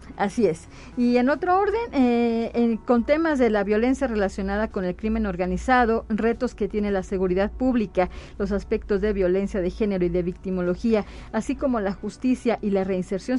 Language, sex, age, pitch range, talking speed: Spanish, female, 40-59, 205-250 Hz, 175 wpm